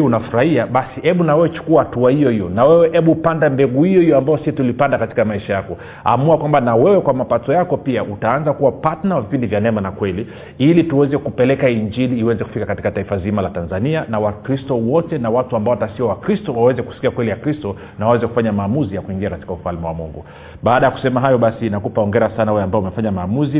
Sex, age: male, 40-59